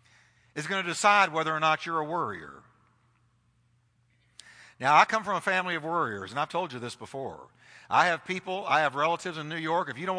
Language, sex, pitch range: English, male, 140-185 Hz